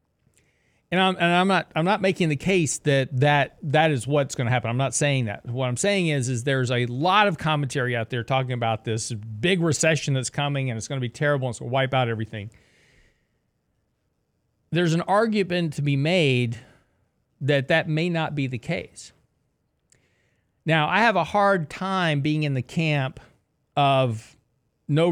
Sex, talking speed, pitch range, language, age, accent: male, 180 wpm, 120-150 Hz, English, 40-59, American